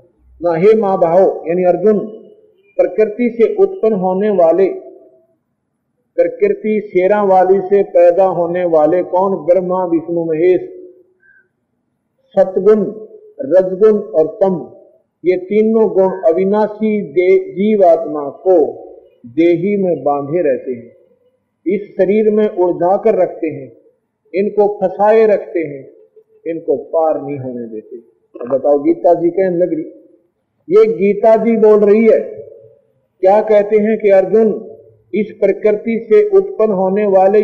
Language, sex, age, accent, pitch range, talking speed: Hindi, male, 50-69, native, 170-225 Hz, 115 wpm